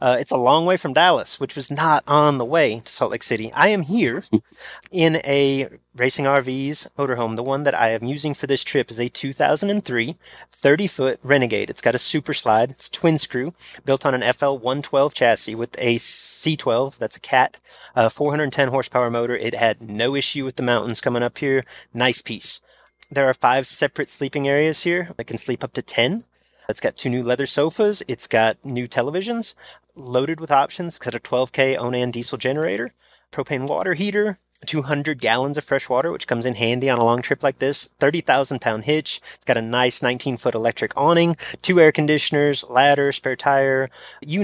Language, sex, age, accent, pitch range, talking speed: English, male, 30-49, American, 125-150 Hz, 190 wpm